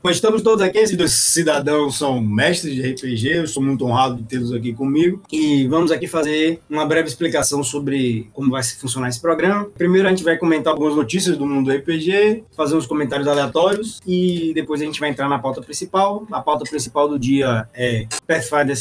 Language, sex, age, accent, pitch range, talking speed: Portuguese, male, 20-39, Brazilian, 125-160 Hz, 200 wpm